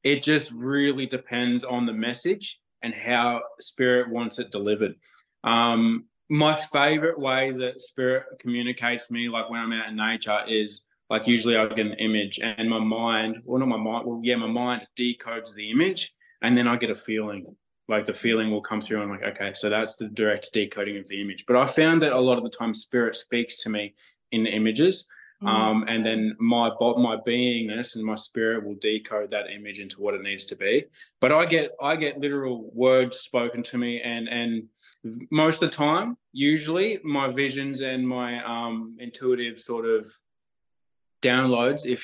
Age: 20-39